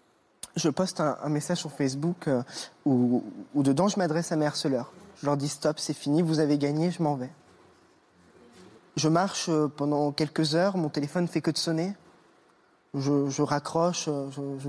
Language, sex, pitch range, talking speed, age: French, male, 145-180 Hz, 185 wpm, 20-39